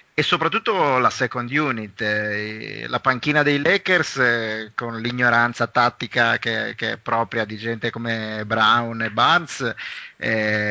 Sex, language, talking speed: male, Italian, 140 wpm